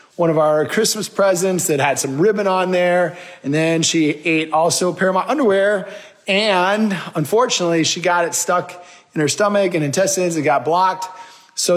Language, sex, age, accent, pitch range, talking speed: English, male, 20-39, American, 155-185 Hz, 185 wpm